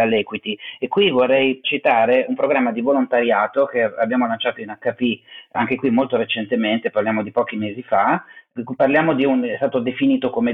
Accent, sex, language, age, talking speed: native, male, Italian, 30-49, 170 wpm